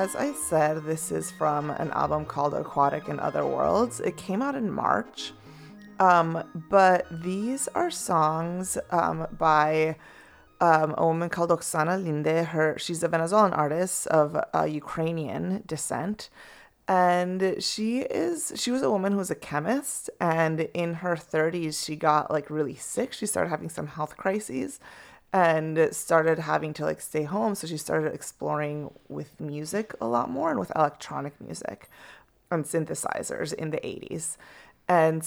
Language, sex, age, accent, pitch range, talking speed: English, female, 30-49, American, 155-185 Hz, 155 wpm